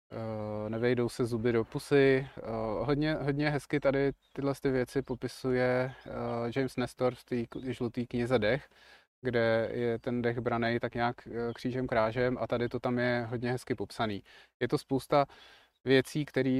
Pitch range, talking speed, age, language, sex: 115-130 Hz, 145 wpm, 20-39, Czech, male